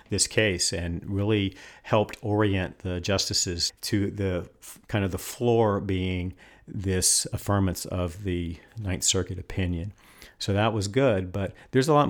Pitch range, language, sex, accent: 95-125 Hz, English, male, American